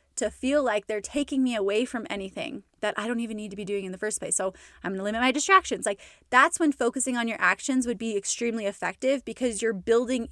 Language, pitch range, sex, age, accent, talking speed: English, 215-270 Hz, female, 20-39, American, 240 wpm